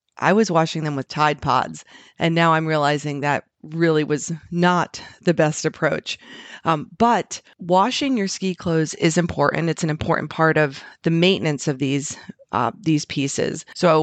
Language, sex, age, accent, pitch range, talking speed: English, female, 40-59, American, 155-180 Hz, 165 wpm